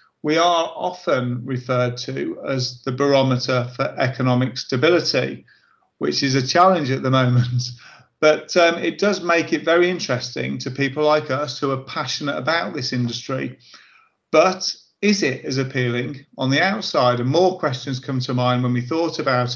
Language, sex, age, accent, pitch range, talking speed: English, male, 40-59, British, 125-155 Hz, 165 wpm